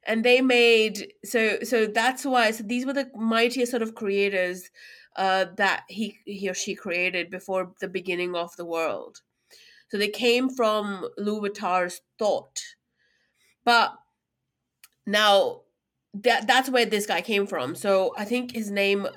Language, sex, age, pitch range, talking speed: English, female, 30-49, 190-245 Hz, 150 wpm